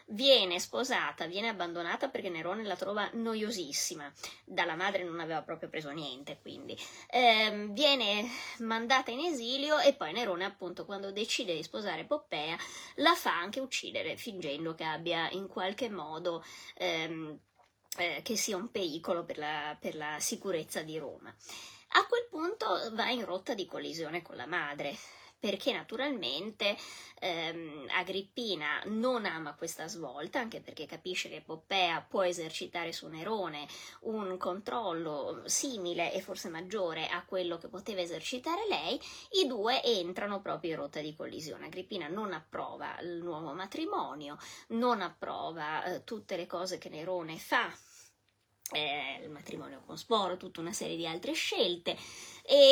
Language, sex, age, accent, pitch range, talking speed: Italian, female, 20-39, native, 170-235 Hz, 145 wpm